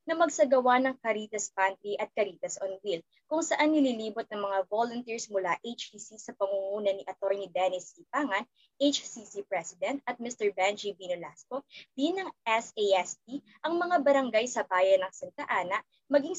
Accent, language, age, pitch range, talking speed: native, Filipino, 20-39, 195-270 Hz, 150 wpm